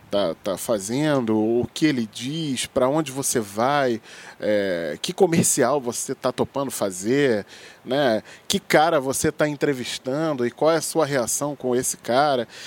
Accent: Brazilian